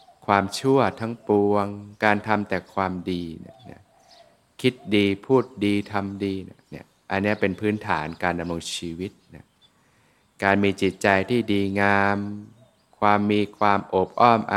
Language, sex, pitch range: Thai, male, 95-105 Hz